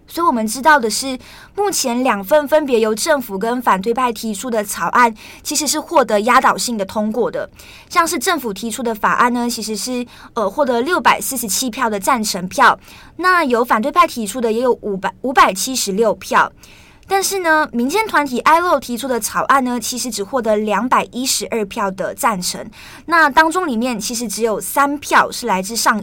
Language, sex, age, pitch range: Chinese, female, 20-39, 215-275 Hz